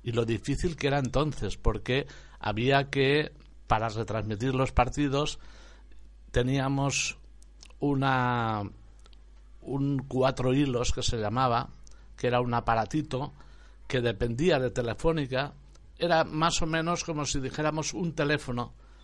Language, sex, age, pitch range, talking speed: Spanish, male, 60-79, 120-160 Hz, 115 wpm